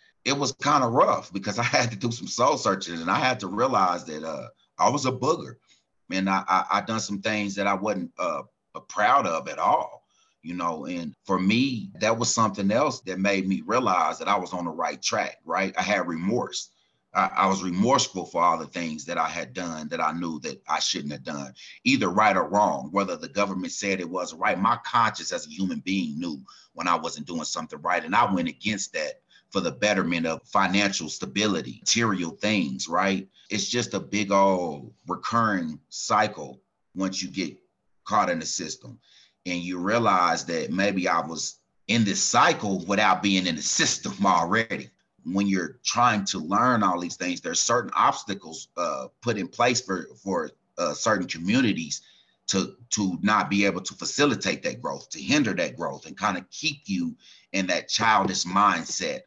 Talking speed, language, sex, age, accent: 195 wpm, English, male, 30-49, American